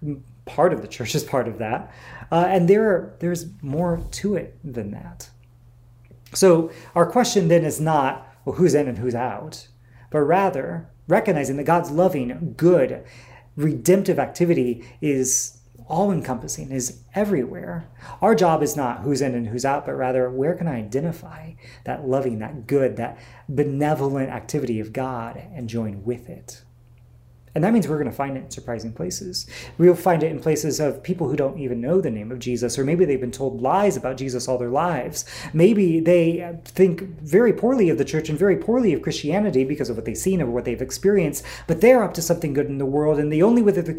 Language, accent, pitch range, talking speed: English, American, 125-170 Hz, 195 wpm